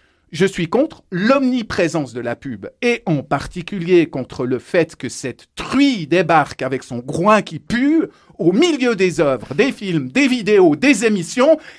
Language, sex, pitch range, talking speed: French, male, 145-220 Hz, 165 wpm